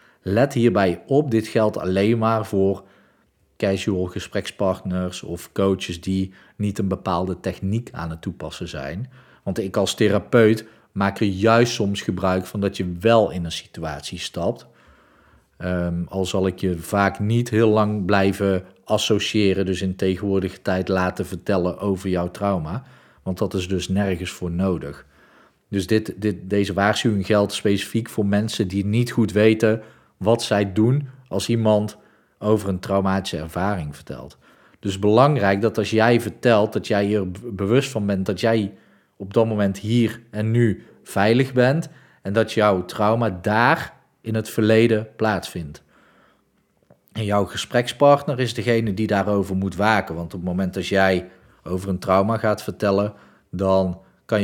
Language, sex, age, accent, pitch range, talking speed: Dutch, male, 40-59, Dutch, 95-110 Hz, 150 wpm